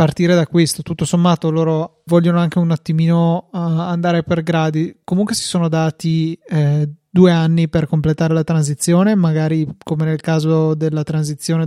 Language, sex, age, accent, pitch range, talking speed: Italian, male, 20-39, native, 155-175 Hz, 155 wpm